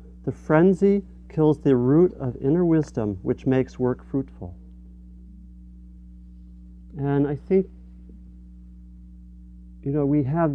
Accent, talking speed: American, 110 wpm